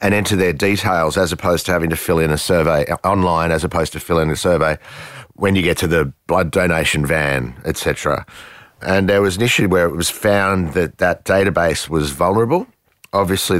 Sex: male